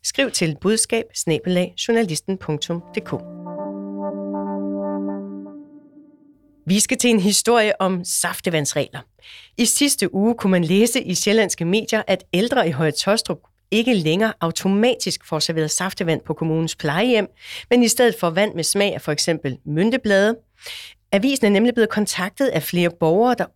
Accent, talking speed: native, 135 wpm